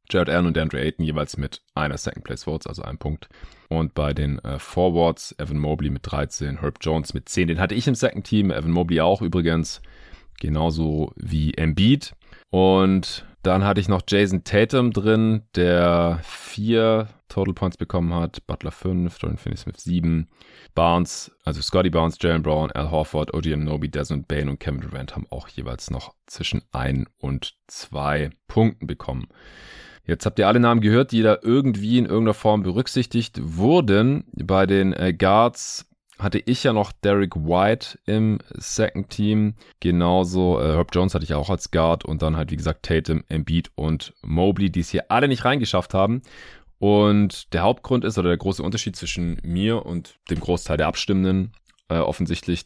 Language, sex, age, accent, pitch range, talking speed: German, male, 30-49, German, 80-105 Hz, 175 wpm